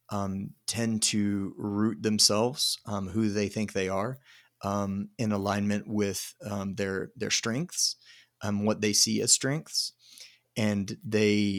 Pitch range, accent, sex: 100-110 Hz, American, male